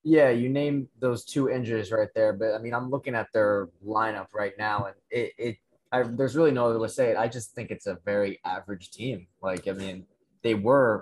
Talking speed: 235 wpm